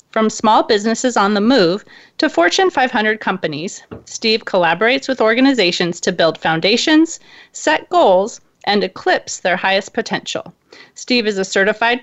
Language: English